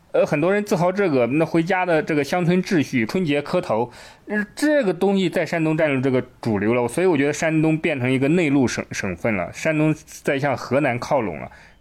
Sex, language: male, Chinese